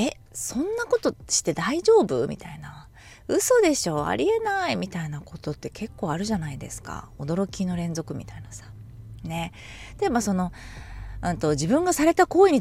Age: 20-39